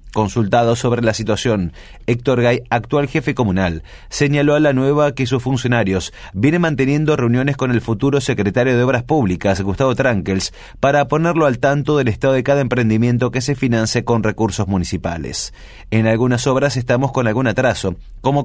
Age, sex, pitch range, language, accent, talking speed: 30-49, male, 110-140 Hz, Spanish, Argentinian, 165 wpm